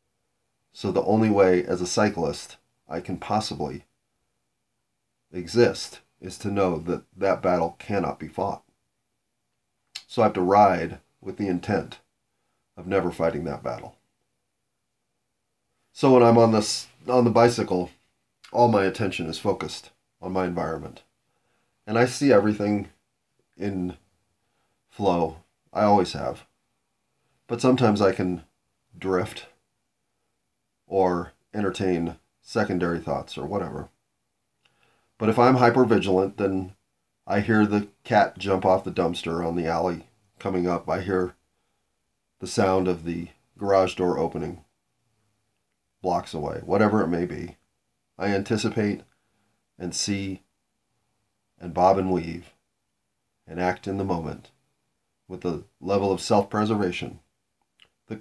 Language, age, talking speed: English, 40-59, 125 wpm